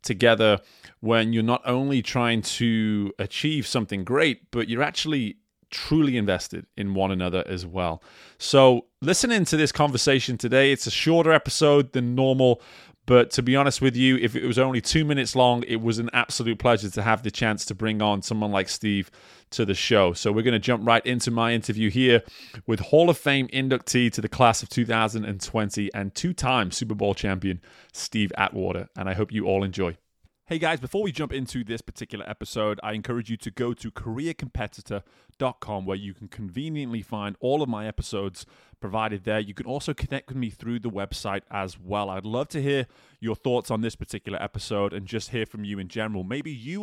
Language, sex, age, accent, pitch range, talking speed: English, male, 30-49, British, 105-130 Hz, 195 wpm